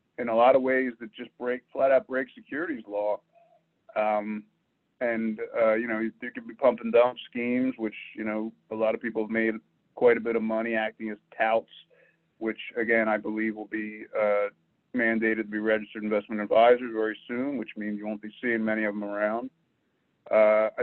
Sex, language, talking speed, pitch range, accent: male, English, 195 wpm, 110-120 Hz, American